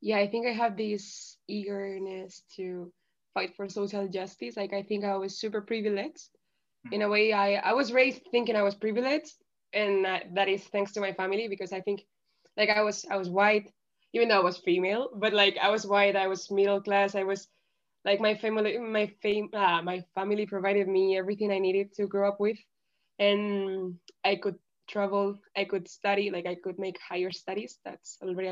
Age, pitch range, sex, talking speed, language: 20-39, 190-220 Hz, female, 200 wpm, Urdu